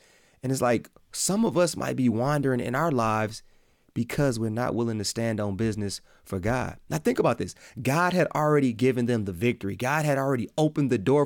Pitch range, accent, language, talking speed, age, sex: 110-145 Hz, American, English, 210 wpm, 30-49, male